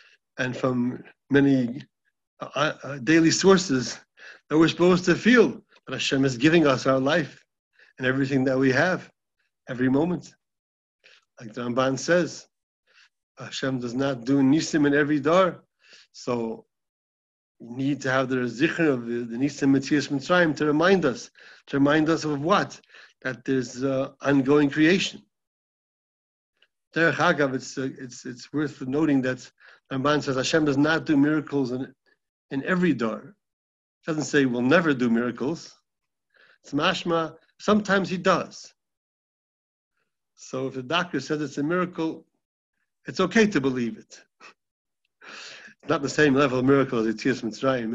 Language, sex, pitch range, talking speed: English, male, 130-160 Hz, 145 wpm